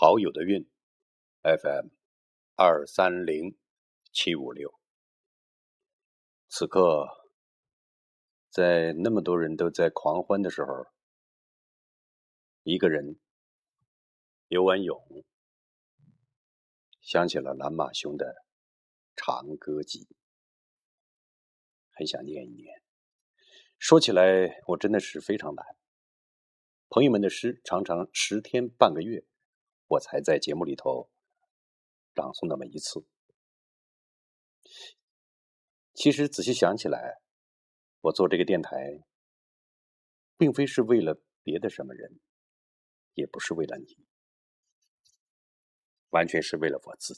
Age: 50-69